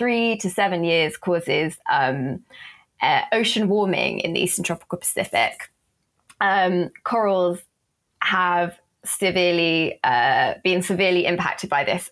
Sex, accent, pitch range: female, British, 175-210 Hz